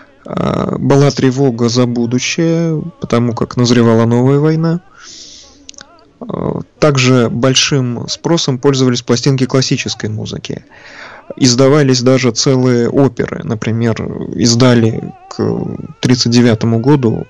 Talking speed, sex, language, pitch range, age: 85 wpm, male, Russian, 115-140 Hz, 20-39